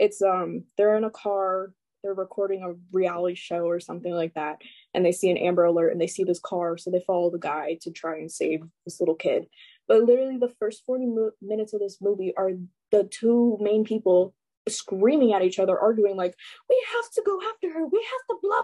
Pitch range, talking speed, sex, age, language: 195-250 Hz, 220 wpm, female, 20-39, English